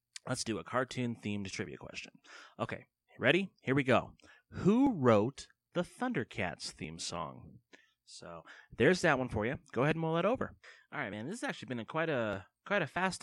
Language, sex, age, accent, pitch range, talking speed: English, male, 30-49, American, 105-160 Hz, 190 wpm